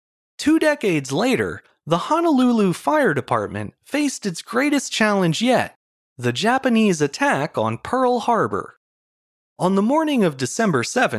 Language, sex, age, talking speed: English, male, 30-49, 130 wpm